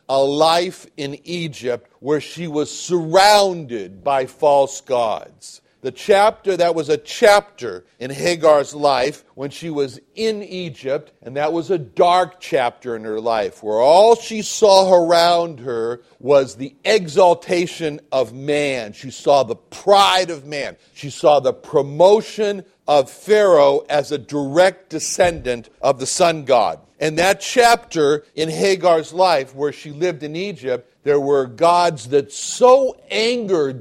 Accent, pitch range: American, 140-185 Hz